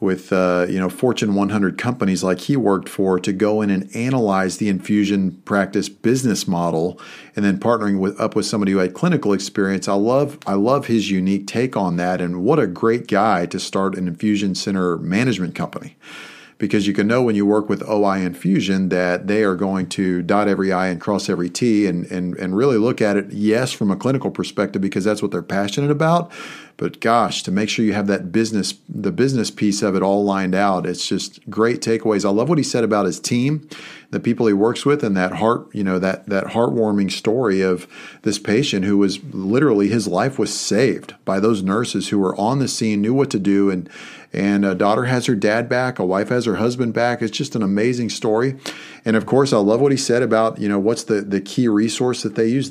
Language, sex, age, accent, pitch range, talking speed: English, male, 40-59, American, 95-115 Hz, 225 wpm